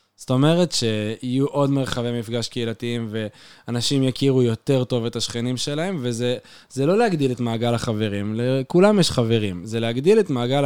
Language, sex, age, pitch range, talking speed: Hebrew, male, 20-39, 110-135 Hz, 150 wpm